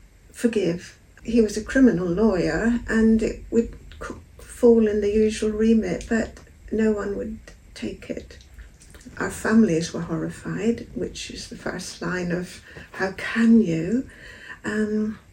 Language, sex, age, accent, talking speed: English, female, 60-79, British, 135 wpm